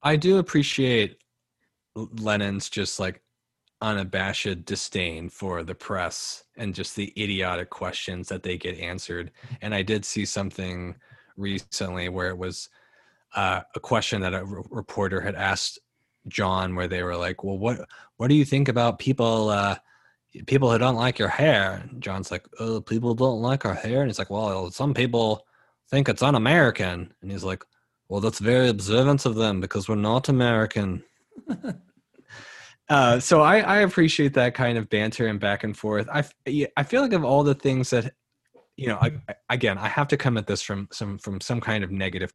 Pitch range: 95-130 Hz